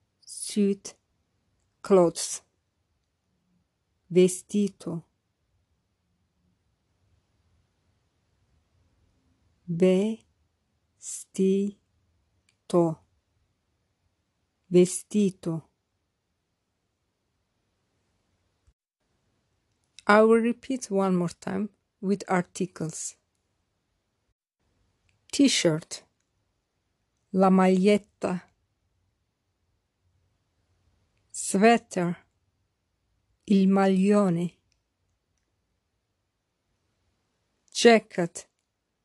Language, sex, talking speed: English, female, 30 wpm